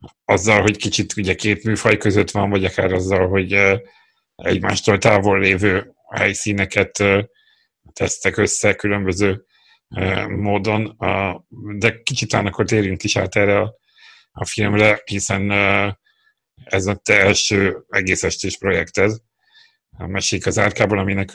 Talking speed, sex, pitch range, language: 115 wpm, male, 95-110 Hz, Hungarian